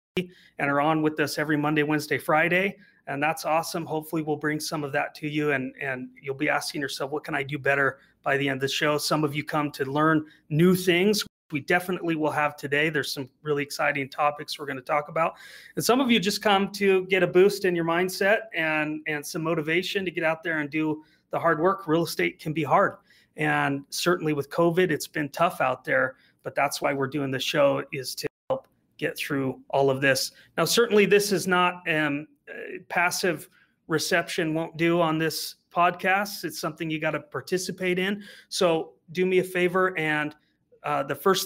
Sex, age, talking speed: male, 30-49, 205 wpm